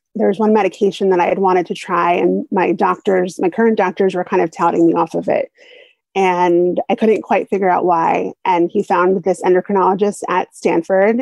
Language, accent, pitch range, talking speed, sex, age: English, American, 185-235 Hz, 205 wpm, female, 30-49